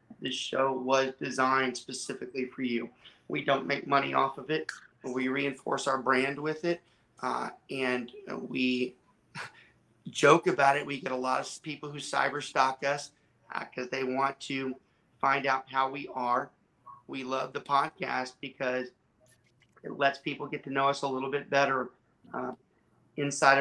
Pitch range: 130-140 Hz